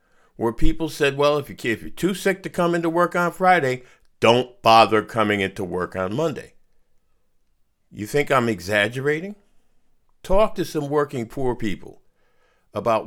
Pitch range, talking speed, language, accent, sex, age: 110-165 Hz, 150 wpm, English, American, male, 50-69